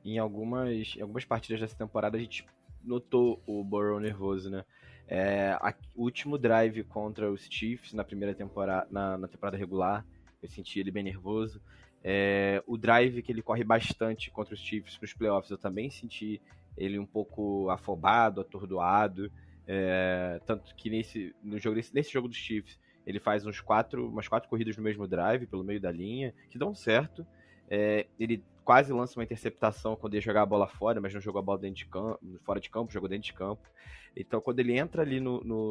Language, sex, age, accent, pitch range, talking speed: Portuguese, male, 20-39, Brazilian, 95-115 Hz, 195 wpm